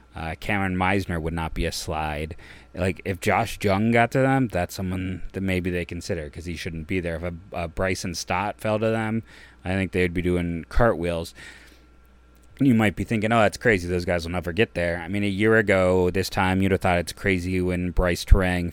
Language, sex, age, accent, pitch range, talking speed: English, male, 30-49, American, 85-100 Hz, 220 wpm